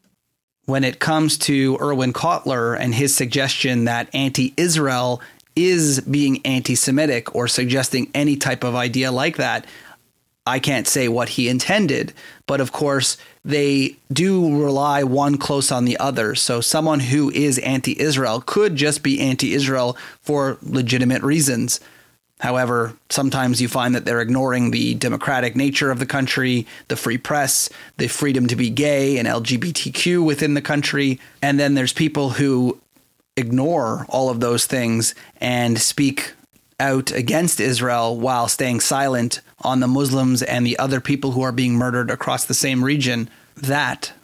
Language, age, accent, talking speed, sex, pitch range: English, 30-49, American, 150 wpm, male, 125-140 Hz